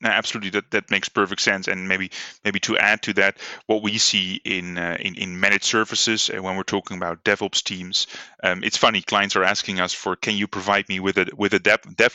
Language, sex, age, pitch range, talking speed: English, male, 20-39, 95-115 Hz, 230 wpm